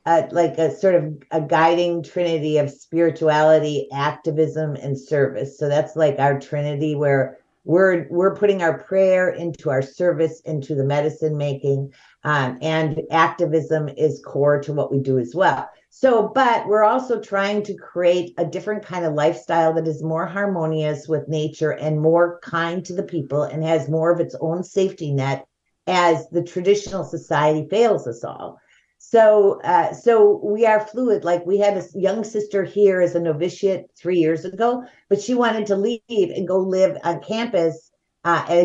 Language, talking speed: English, 175 wpm